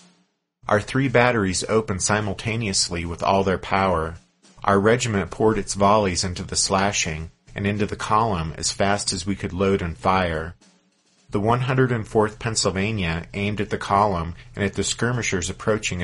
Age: 40-59